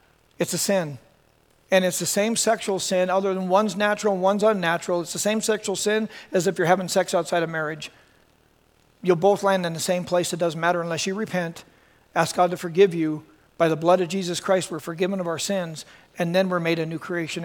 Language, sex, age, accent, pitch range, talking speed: English, male, 40-59, American, 175-220 Hz, 225 wpm